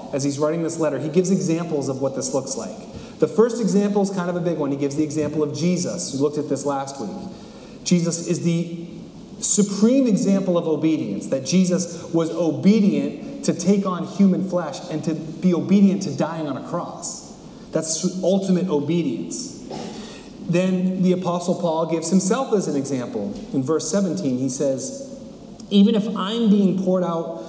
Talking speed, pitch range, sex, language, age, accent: 180 wpm, 165-215 Hz, male, English, 30-49, American